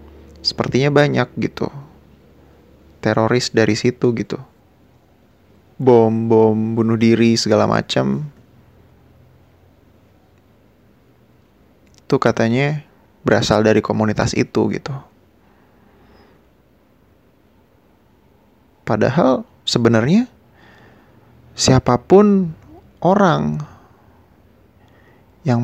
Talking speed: 55 wpm